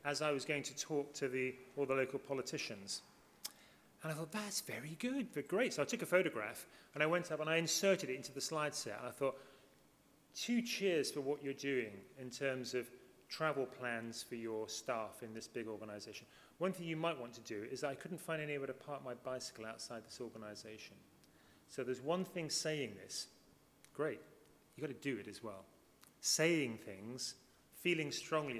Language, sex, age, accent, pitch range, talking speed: English, male, 30-49, British, 120-155 Hz, 200 wpm